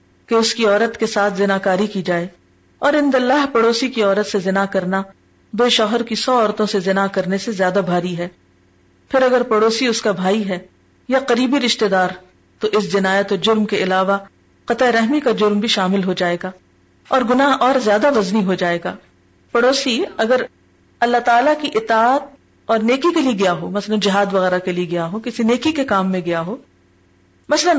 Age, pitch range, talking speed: 40-59, 185-230 Hz, 200 wpm